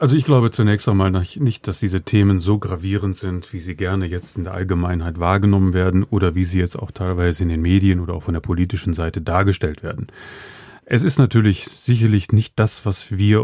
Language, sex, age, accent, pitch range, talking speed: German, male, 30-49, German, 90-110 Hz, 205 wpm